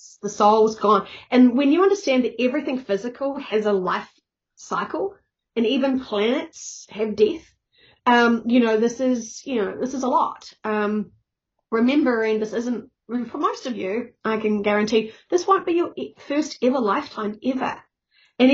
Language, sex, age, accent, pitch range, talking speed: English, female, 30-49, Australian, 210-260 Hz, 160 wpm